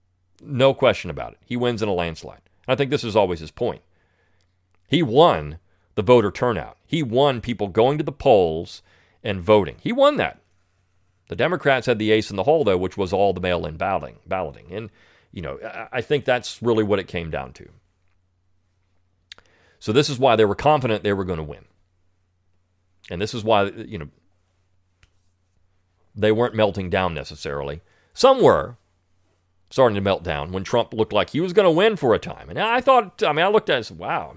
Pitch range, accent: 90-115 Hz, American